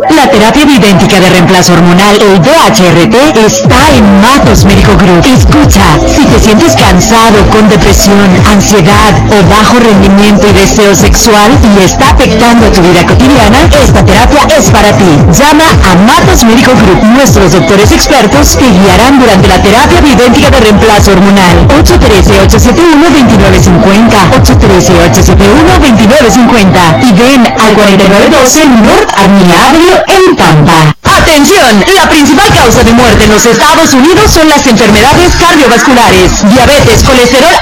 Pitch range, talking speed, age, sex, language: 210-310 Hz, 130 wpm, 50-69, female, Spanish